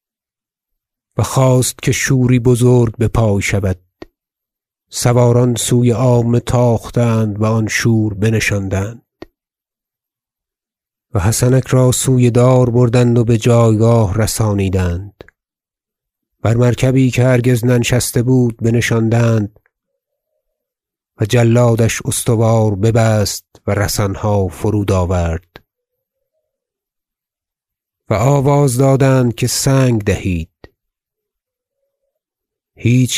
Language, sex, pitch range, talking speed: Persian, male, 105-125 Hz, 85 wpm